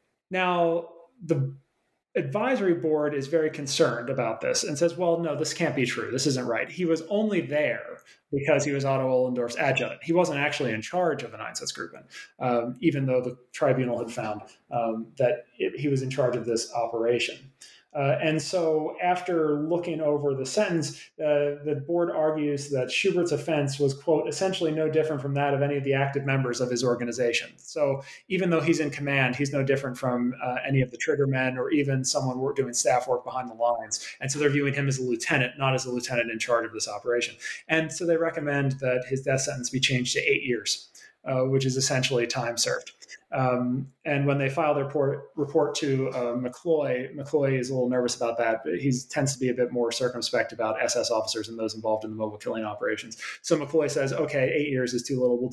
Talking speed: 210 wpm